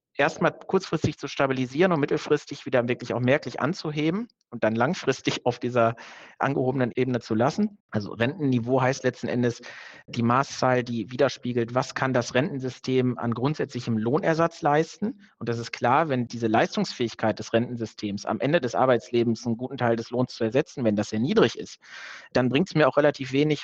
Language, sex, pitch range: German, male, 120-145 Hz